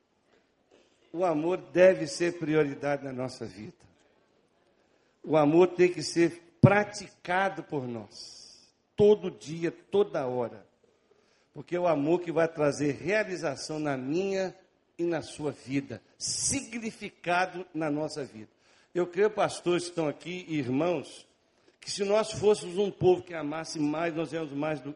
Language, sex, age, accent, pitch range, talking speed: Portuguese, male, 60-79, Brazilian, 155-200 Hz, 140 wpm